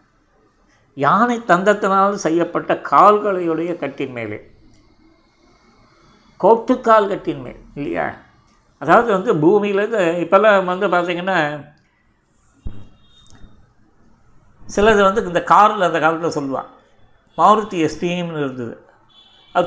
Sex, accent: male, native